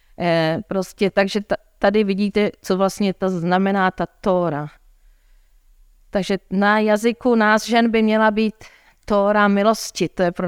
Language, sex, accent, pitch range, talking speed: Czech, female, native, 180-210 Hz, 130 wpm